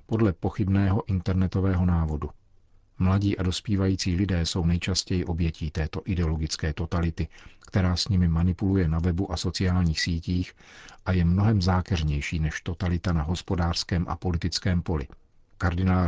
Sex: male